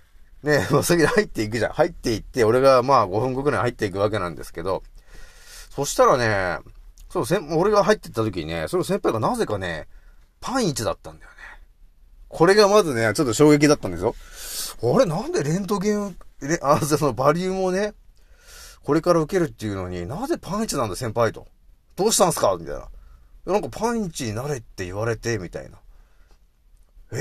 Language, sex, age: Japanese, male, 40-59